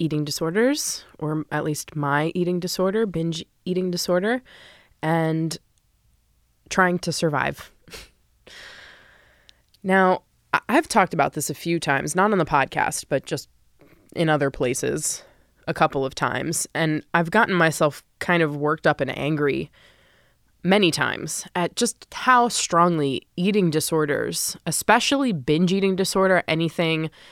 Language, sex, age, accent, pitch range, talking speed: English, female, 20-39, American, 150-180 Hz, 130 wpm